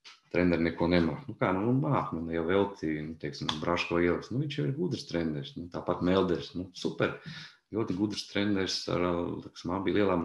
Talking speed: 175 wpm